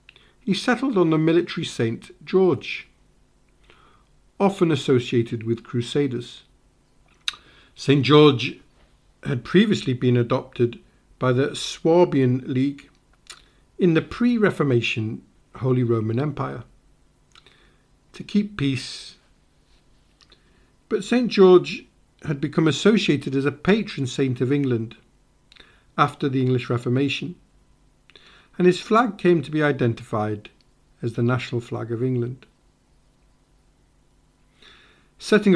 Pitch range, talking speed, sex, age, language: 125-175 Hz, 100 wpm, male, 50-69, English